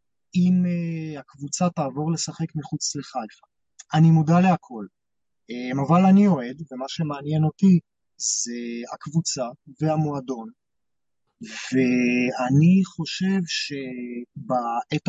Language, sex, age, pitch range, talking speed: Hebrew, male, 30-49, 140-180 Hz, 85 wpm